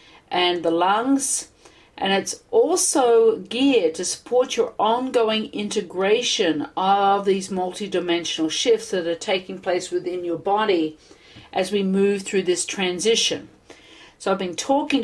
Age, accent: 50-69, Australian